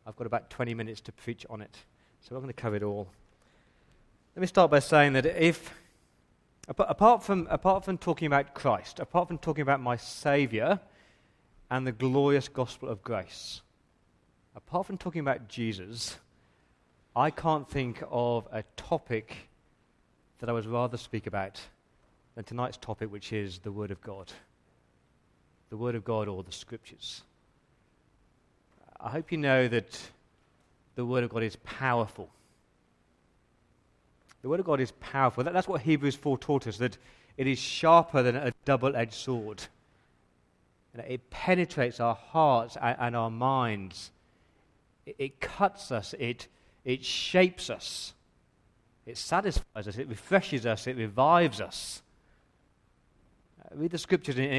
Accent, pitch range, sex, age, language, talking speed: British, 110-140 Hz, male, 30-49, English, 150 wpm